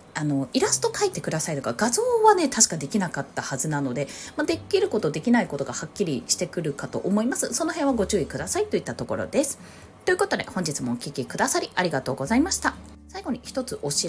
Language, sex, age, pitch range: Japanese, female, 20-39, 175-285 Hz